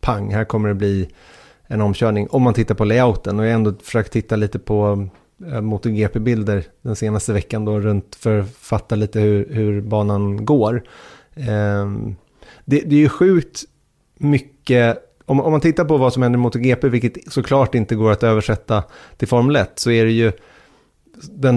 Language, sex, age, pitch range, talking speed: Swedish, male, 30-49, 105-125 Hz, 175 wpm